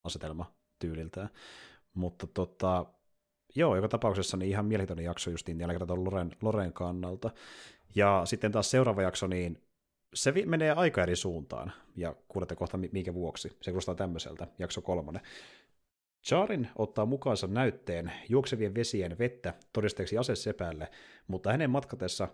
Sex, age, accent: male, 30-49, native